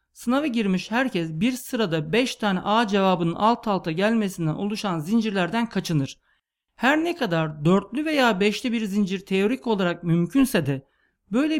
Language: Turkish